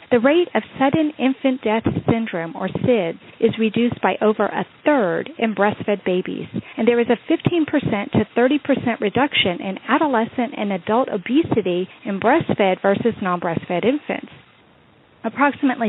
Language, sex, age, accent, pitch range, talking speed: English, female, 40-59, American, 215-290 Hz, 140 wpm